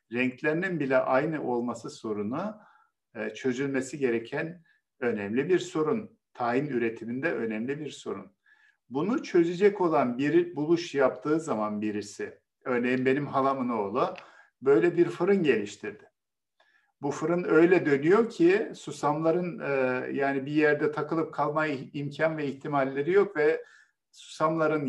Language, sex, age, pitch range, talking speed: Turkish, male, 50-69, 130-170 Hz, 120 wpm